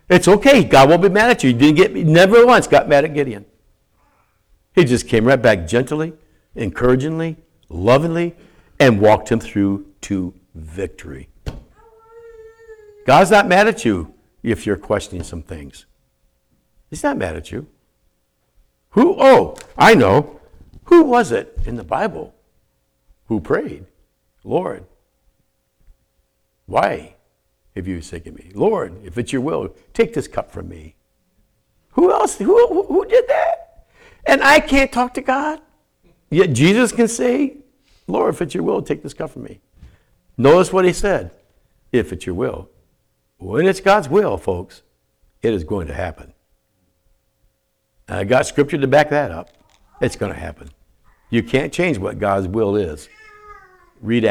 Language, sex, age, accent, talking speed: English, male, 60-79, American, 155 wpm